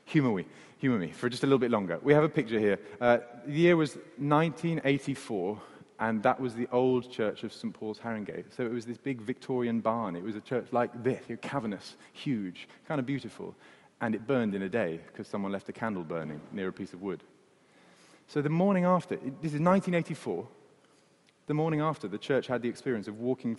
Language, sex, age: English, male, 30-49